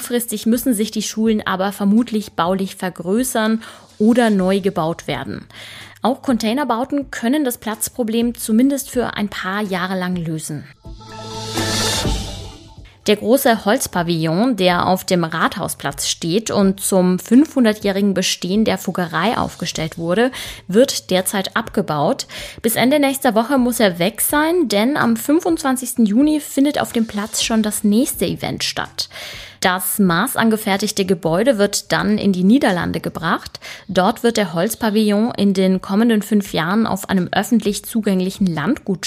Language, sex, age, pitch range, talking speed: German, female, 20-39, 185-235 Hz, 135 wpm